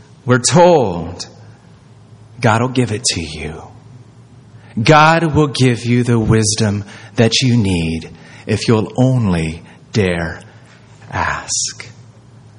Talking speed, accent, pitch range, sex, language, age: 105 wpm, American, 125-175 Hz, male, English, 30-49